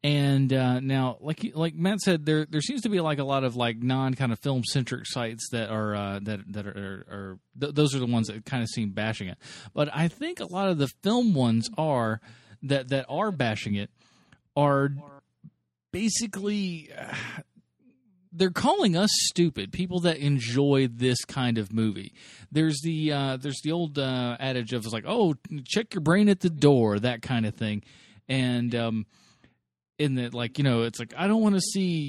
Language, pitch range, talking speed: English, 120-165 Hz, 200 wpm